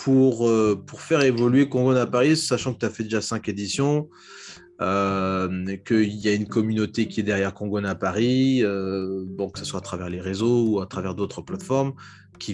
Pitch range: 105-130 Hz